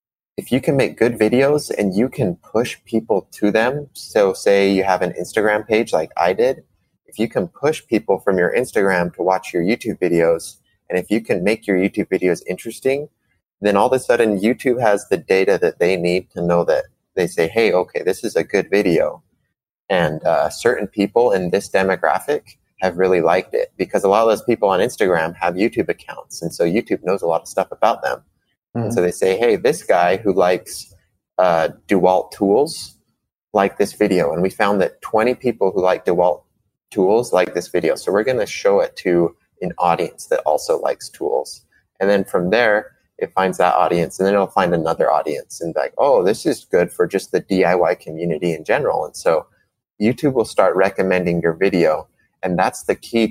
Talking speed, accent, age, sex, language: 205 wpm, American, 20-39, male, English